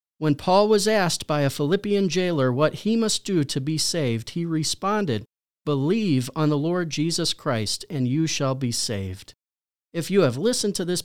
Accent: American